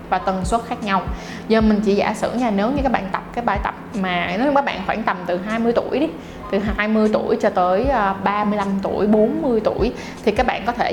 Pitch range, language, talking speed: 195-245 Hz, Vietnamese, 240 wpm